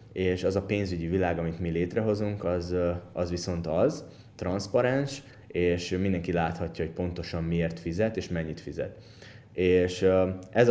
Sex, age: male, 20-39